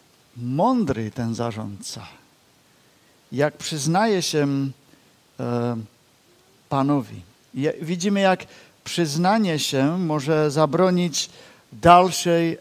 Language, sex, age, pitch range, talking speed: Czech, male, 50-69, 135-180 Hz, 65 wpm